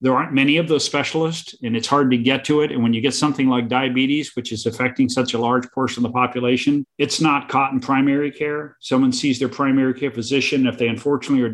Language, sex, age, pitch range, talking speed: English, male, 50-69, 125-145 Hz, 240 wpm